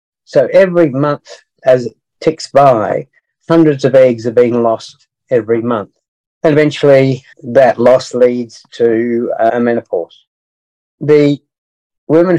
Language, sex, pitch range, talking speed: English, male, 115-145 Hz, 120 wpm